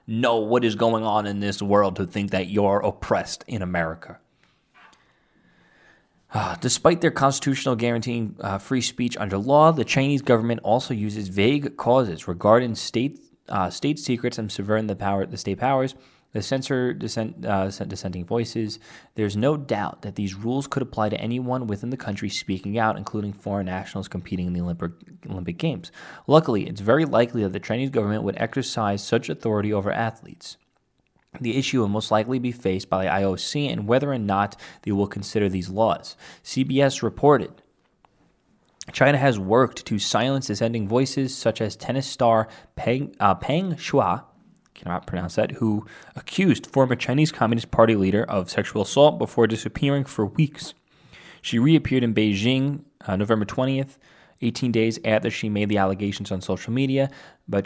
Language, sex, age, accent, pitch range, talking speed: English, male, 20-39, American, 100-130 Hz, 165 wpm